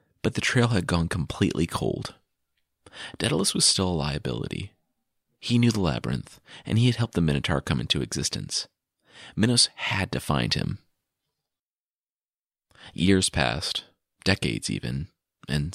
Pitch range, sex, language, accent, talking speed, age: 75-110 Hz, male, English, American, 135 wpm, 30-49